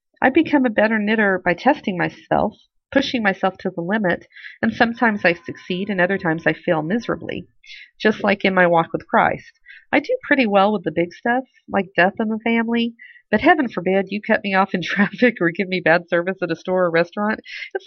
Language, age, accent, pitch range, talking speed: English, 40-59, American, 180-240 Hz, 210 wpm